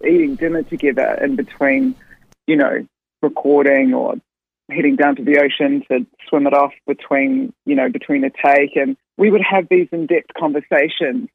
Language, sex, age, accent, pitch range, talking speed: English, female, 20-39, Australian, 140-170 Hz, 170 wpm